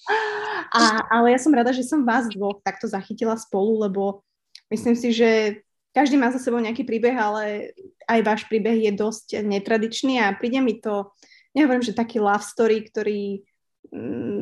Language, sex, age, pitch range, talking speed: Slovak, female, 20-39, 205-240 Hz, 165 wpm